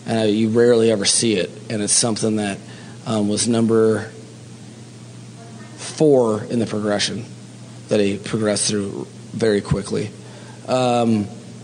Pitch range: 100-115 Hz